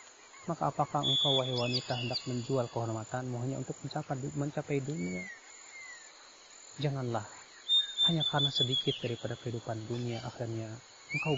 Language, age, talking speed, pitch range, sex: Malay, 30-49, 110 wpm, 115-145 Hz, male